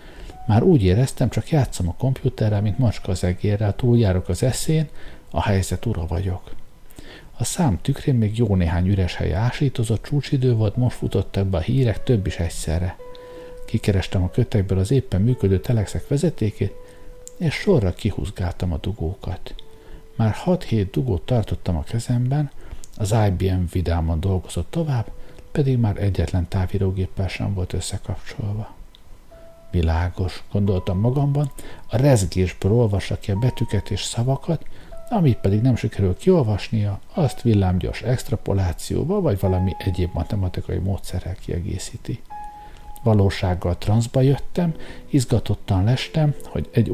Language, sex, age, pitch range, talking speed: Hungarian, male, 60-79, 95-125 Hz, 125 wpm